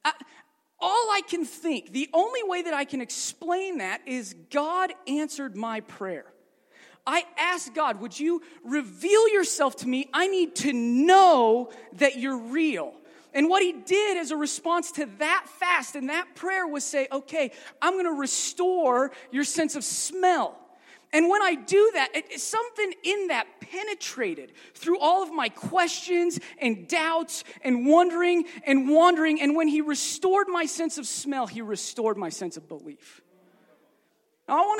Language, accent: English, American